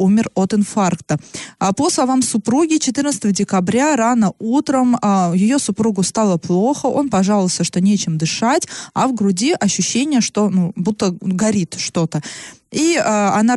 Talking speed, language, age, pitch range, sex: 135 wpm, Russian, 20-39, 185-235 Hz, female